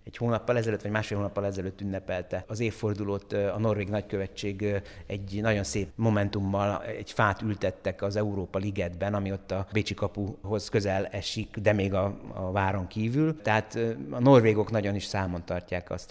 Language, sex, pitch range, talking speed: Hungarian, male, 95-115 Hz, 165 wpm